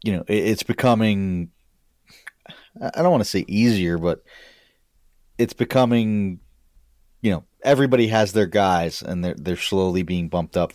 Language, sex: English, male